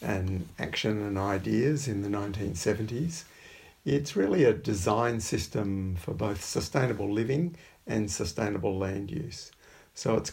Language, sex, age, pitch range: English, male, 50-69, 100-120 Hz